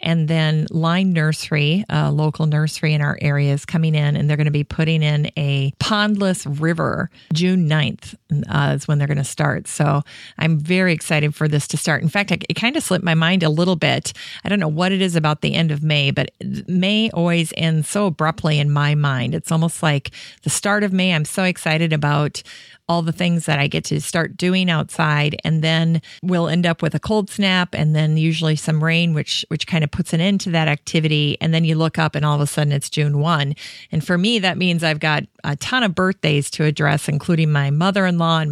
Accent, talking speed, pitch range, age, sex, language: American, 230 wpm, 150-180 Hz, 40-59, female, English